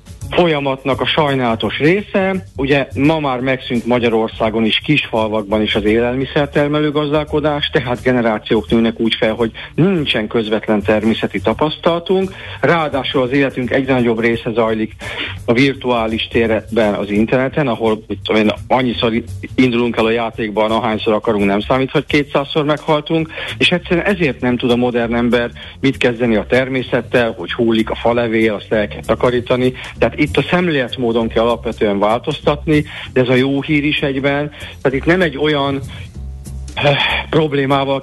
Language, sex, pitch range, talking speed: Hungarian, male, 110-145 Hz, 145 wpm